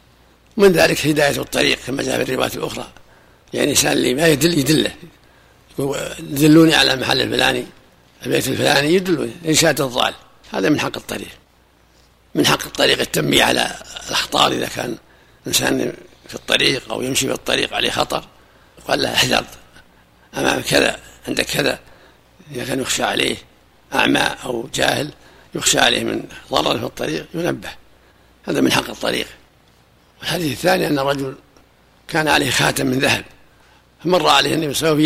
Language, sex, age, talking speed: Arabic, male, 60-79, 145 wpm